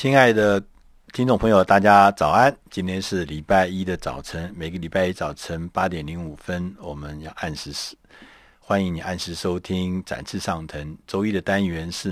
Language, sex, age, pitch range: Chinese, male, 50-69, 75-95 Hz